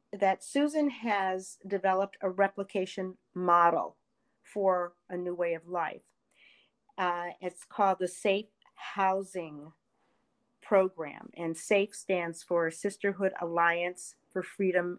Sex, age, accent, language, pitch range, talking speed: female, 40-59, American, English, 175-205 Hz, 110 wpm